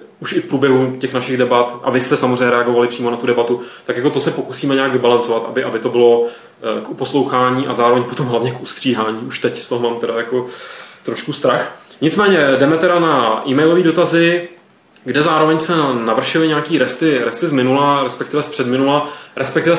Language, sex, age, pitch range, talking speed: Czech, male, 20-39, 120-140 Hz, 190 wpm